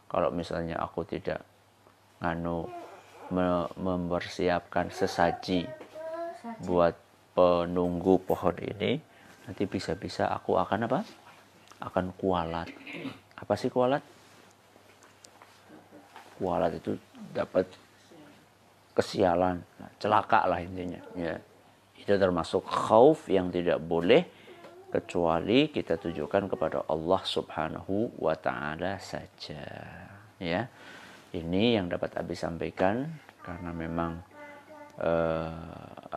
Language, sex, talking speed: Indonesian, male, 90 wpm